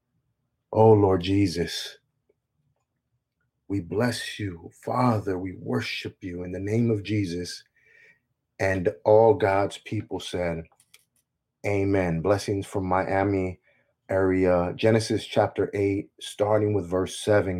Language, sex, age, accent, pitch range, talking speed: English, male, 30-49, American, 95-110 Hz, 110 wpm